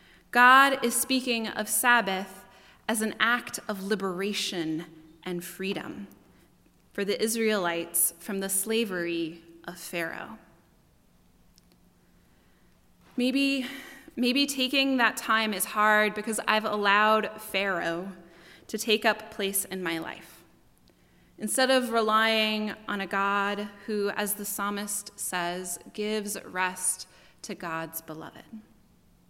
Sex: female